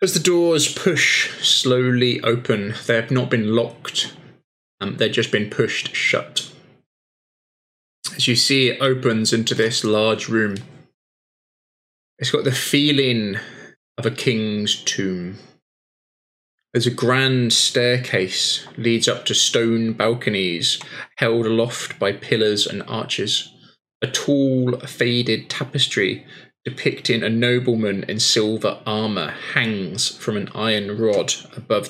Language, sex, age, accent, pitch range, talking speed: English, male, 20-39, British, 110-125 Hz, 125 wpm